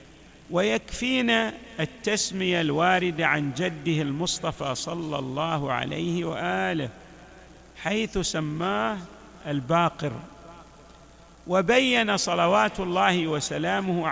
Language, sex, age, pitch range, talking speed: Arabic, male, 50-69, 155-195 Hz, 70 wpm